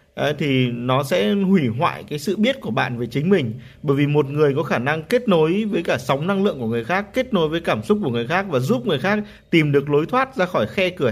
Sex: male